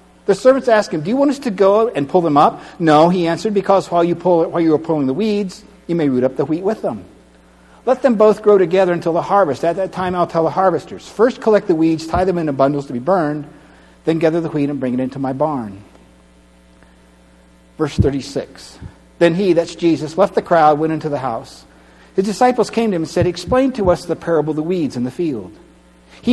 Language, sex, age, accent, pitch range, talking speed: English, male, 60-79, American, 125-180 Hz, 235 wpm